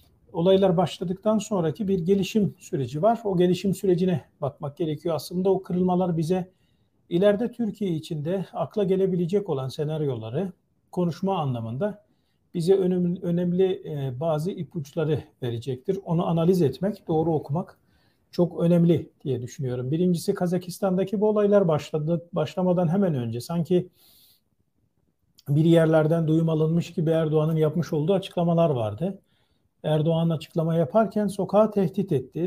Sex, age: male, 40-59